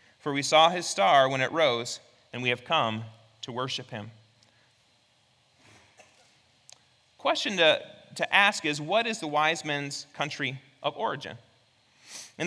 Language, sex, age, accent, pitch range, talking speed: English, male, 30-49, American, 140-200 Hz, 140 wpm